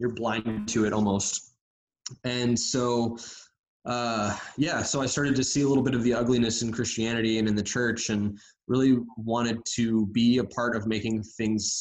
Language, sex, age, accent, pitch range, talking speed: English, male, 20-39, American, 110-125 Hz, 185 wpm